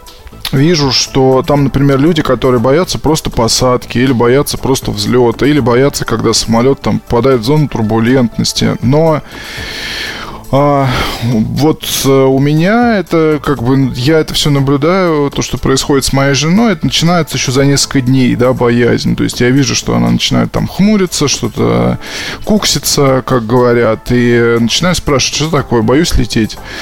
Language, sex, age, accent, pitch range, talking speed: Russian, male, 20-39, native, 120-145 Hz, 150 wpm